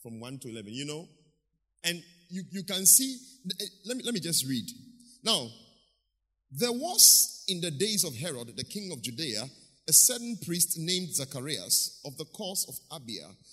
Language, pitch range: English, 140-200 Hz